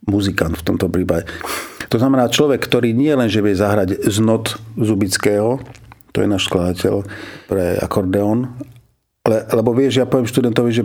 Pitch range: 105-125 Hz